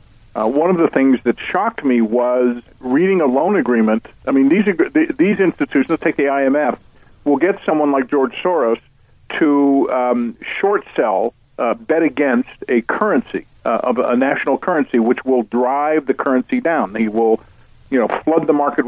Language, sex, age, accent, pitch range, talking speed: English, male, 50-69, American, 115-145 Hz, 180 wpm